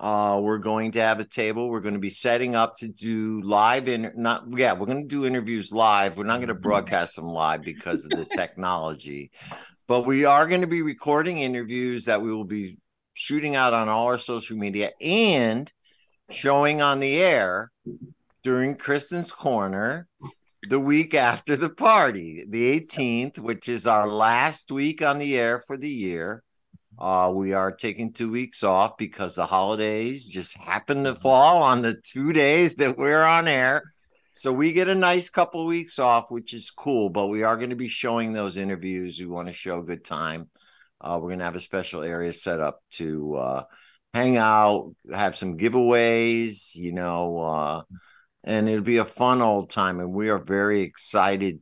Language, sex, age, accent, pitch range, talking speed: English, male, 50-69, American, 95-130 Hz, 190 wpm